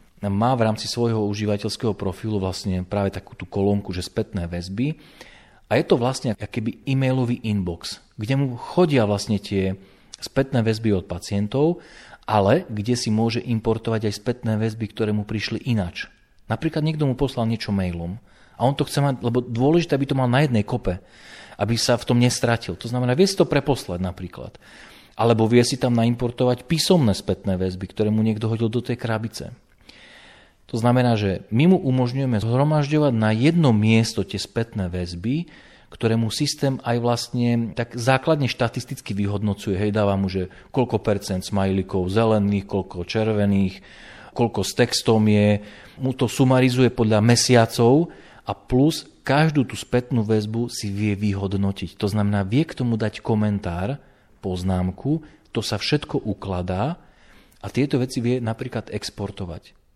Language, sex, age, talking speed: Slovak, male, 40-59, 155 wpm